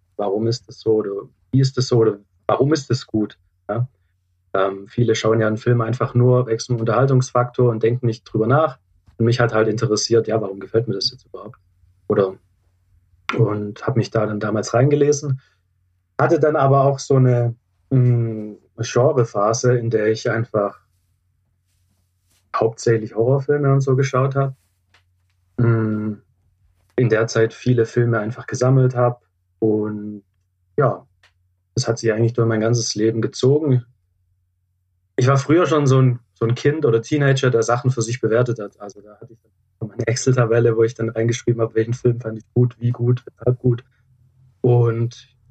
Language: German